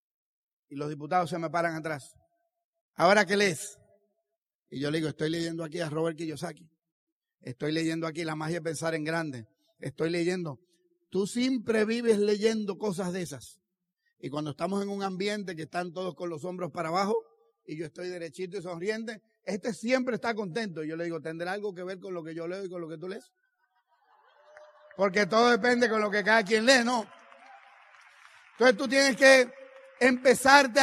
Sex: male